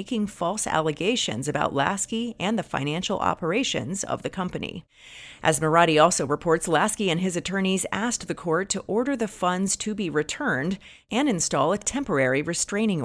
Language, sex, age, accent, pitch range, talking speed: English, female, 30-49, American, 155-205 Hz, 160 wpm